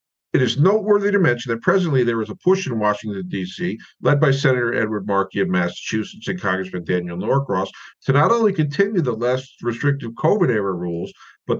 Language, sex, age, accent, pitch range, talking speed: English, male, 50-69, American, 115-155 Hz, 185 wpm